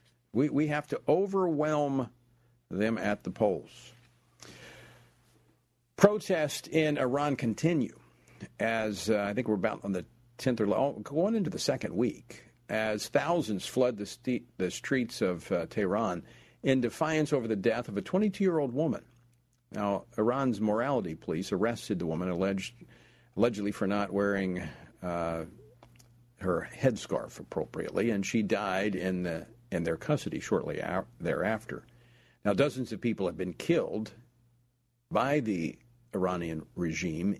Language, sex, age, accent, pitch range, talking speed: English, male, 50-69, American, 95-125 Hz, 135 wpm